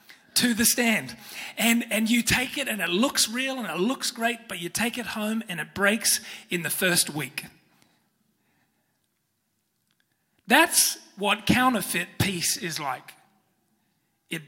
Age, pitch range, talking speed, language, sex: 30-49, 170-230 Hz, 145 wpm, English, male